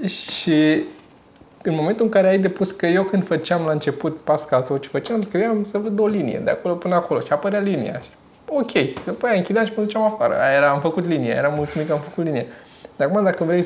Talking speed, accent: 230 wpm, native